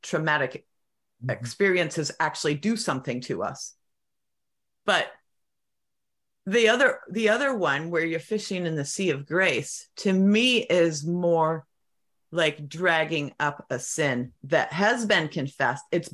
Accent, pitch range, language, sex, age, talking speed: American, 145-200 Hz, English, female, 40-59, 130 wpm